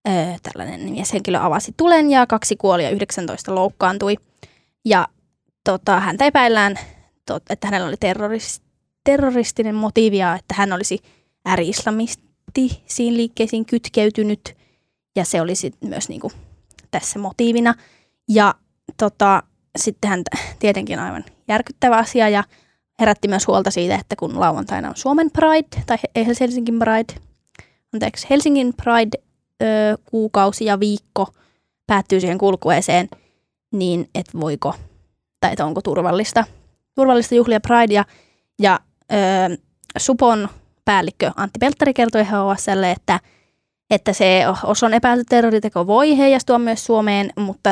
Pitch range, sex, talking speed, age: 195-235 Hz, female, 120 wpm, 10-29